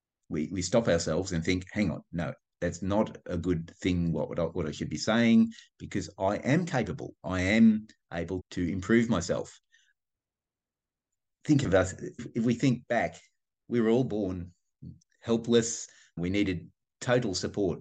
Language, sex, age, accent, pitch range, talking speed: English, male, 30-49, Australian, 85-110 Hz, 155 wpm